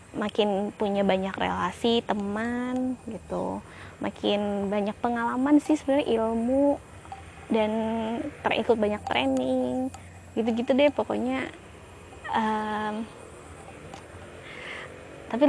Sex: female